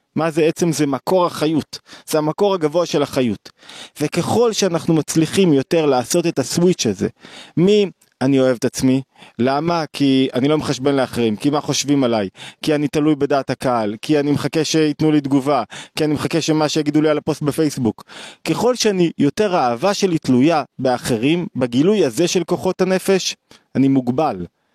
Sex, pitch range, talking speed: male, 140-180 Hz, 160 wpm